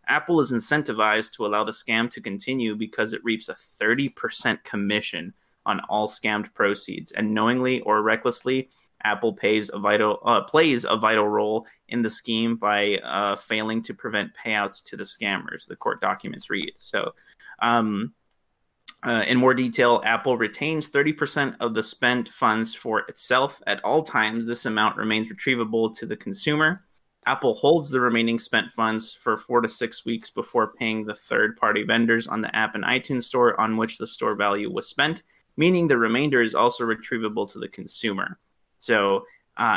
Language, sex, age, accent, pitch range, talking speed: English, male, 30-49, American, 110-130 Hz, 165 wpm